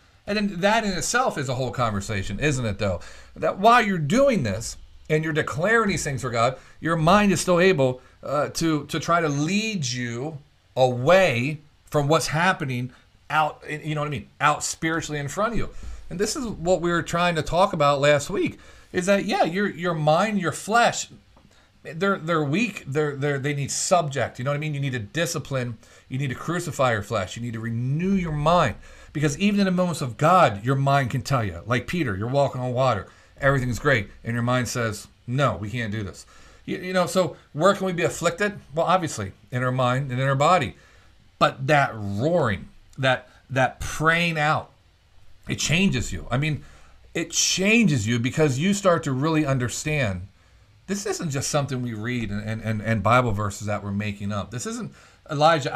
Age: 40-59